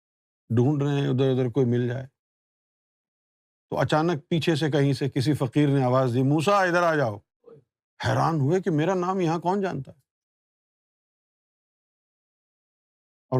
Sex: male